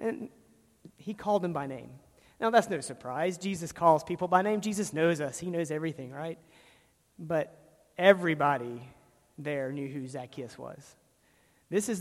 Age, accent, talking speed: 40-59, American, 155 wpm